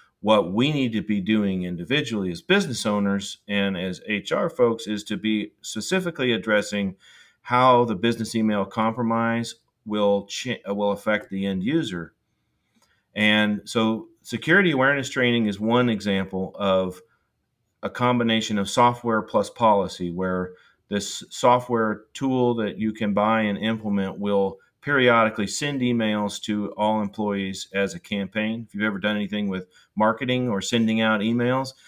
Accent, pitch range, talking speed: American, 105-120 Hz, 145 wpm